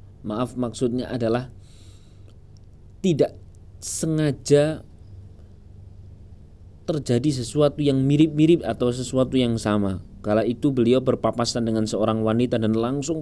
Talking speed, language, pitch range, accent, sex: 100 wpm, Indonesian, 100-135 Hz, native, male